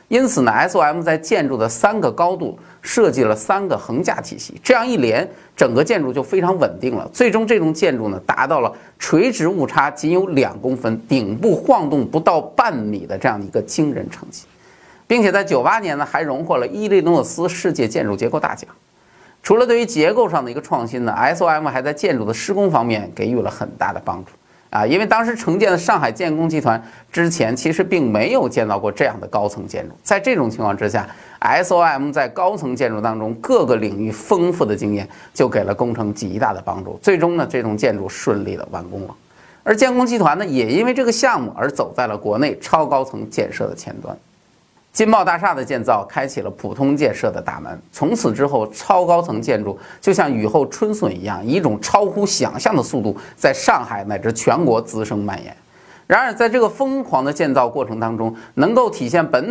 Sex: male